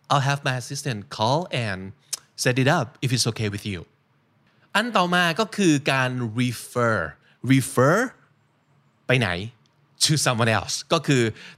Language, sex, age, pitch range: Thai, male, 20-39, 120-160 Hz